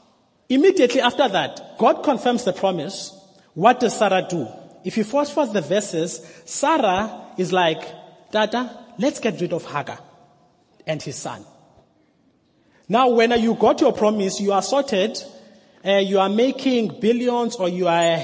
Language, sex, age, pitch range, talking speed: English, male, 30-49, 175-225 Hz, 150 wpm